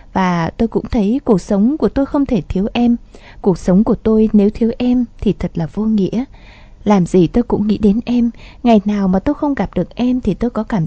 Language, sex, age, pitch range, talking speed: Vietnamese, female, 20-39, 190-240 Hz, 235 wpm